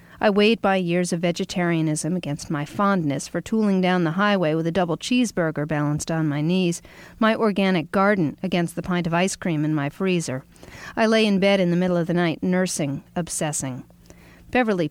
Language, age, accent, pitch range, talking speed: English, 50-69, American, 170-210 Hz, 190 wpm